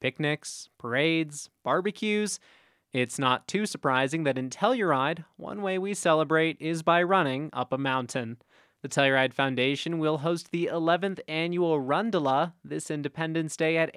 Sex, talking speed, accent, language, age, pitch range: male, 140 wpm, American, English, 20-39, 130-170 Hz